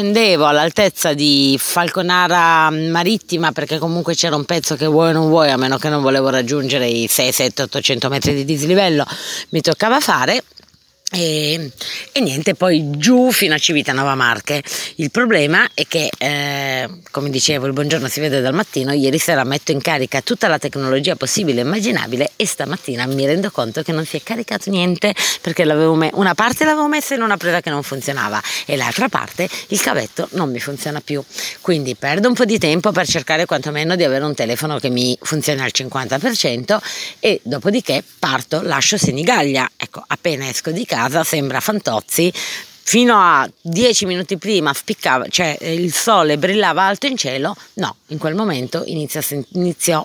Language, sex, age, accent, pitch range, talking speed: Italian, female, 30-49, native, 140-180 Hz, 175 wpm